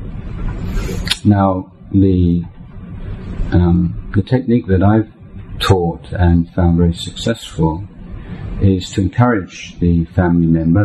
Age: 50-69